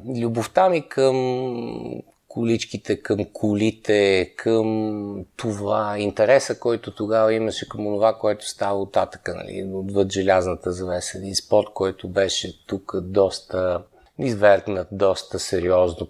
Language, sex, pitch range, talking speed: Bulgarian, male, 95-120 Hz, 115 wpm